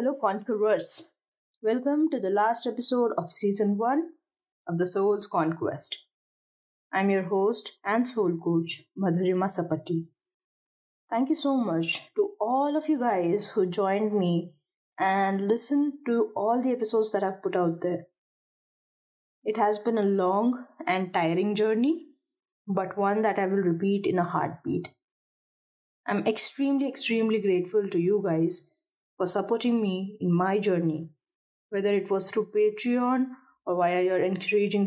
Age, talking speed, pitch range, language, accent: 20-39, 145 wpm, 185-245 Hz, English, Indian